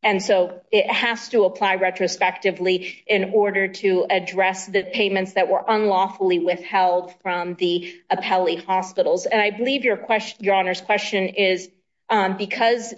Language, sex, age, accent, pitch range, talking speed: English, female, 40-59, American, 190-230 Hz, 150 wpm